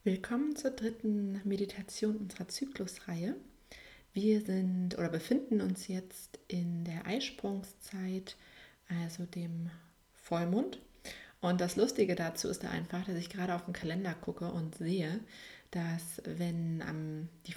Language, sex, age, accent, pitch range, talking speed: German, female, 30-49, German, 175-215 Hz, 130 wpm